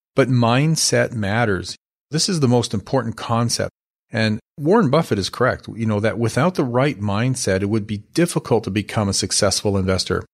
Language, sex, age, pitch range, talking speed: English, male, 40-59, 105-130 Hz, 175 wpm